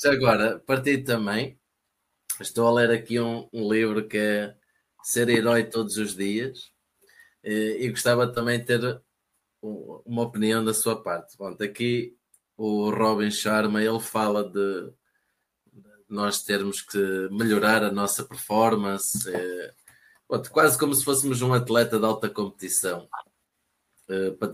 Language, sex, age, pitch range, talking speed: Portuguese, male, 20-39, 105-120 Hz, 125 wpm